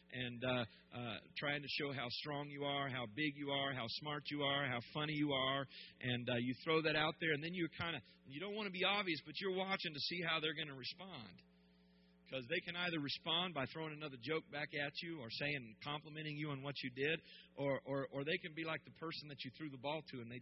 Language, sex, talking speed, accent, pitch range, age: English, male, 255 wpm, American, 110-150 Hz, 40-59